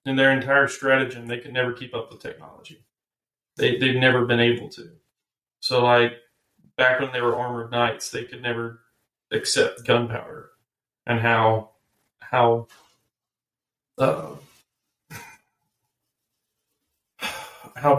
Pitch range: 120-140 Hz